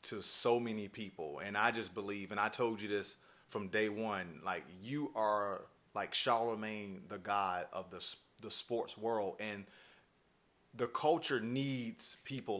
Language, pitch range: English, 100-125 Hz